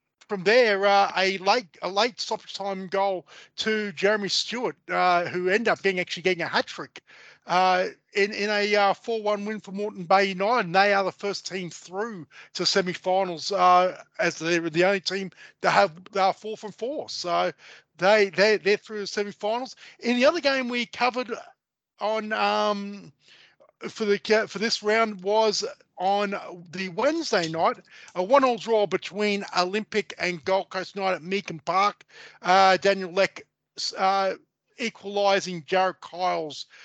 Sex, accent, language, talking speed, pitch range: male, Australian, English, 165 wpm, 180-210 Hz